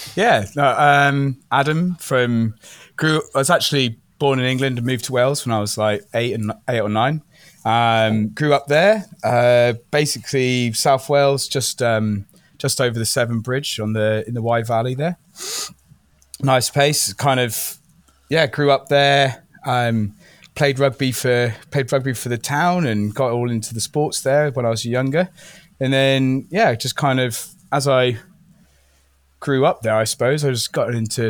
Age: 20-39